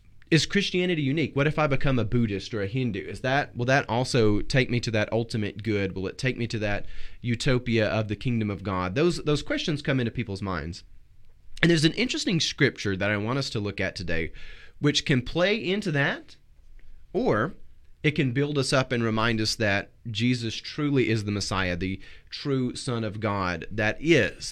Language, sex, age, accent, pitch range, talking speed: English, male, 30-49, American, 100-130 Hz, 200 wpm